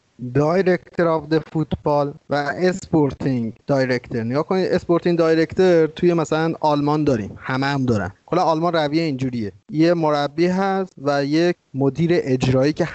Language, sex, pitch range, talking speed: Persian, male, 135-165 Hz, 135 wpm